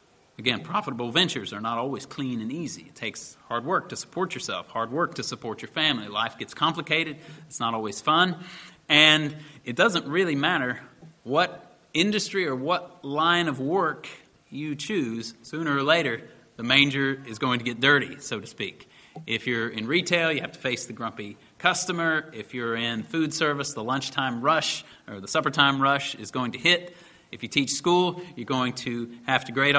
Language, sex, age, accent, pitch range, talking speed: English, male, 30-49, American, 130-165 Hz, 185 wpm